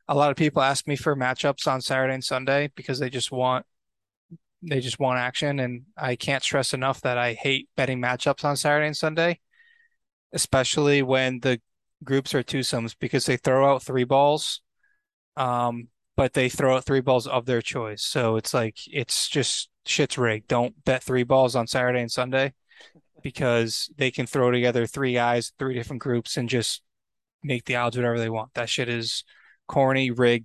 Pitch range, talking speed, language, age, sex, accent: 120-135 Hz, 185 wpm, English, 20-39, male, American